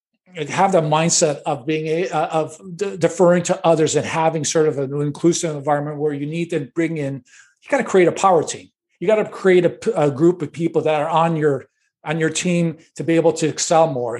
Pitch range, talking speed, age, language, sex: 145-170 Hz, 220 wpm, 50-69, English, male